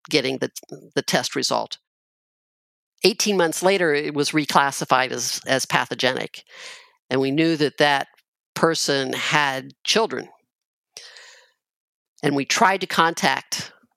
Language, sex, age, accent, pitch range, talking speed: English, female, 50-69, American, 135-180 Hz, 115 wpm